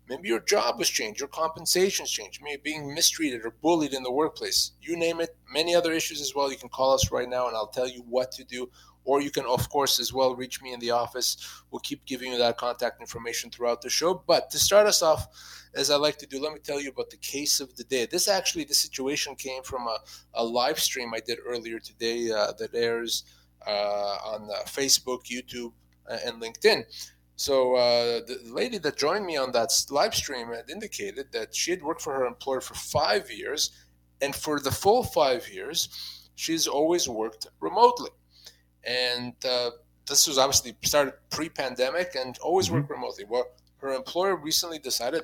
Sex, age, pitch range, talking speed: male, 30-49, 115-150 Hz, 205 wpm